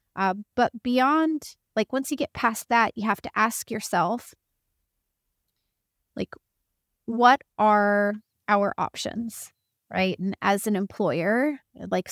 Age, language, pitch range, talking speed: 30-49, English, 180-210 Hz, 125 wpm